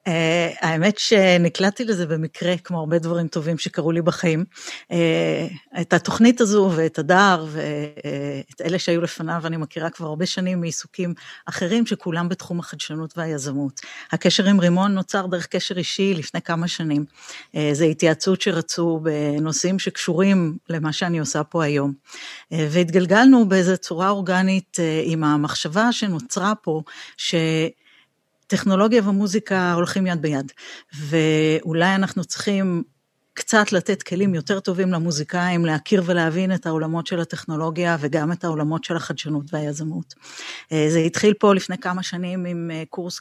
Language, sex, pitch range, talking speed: Hebrew, female, 160-185 Hz, 140 wpm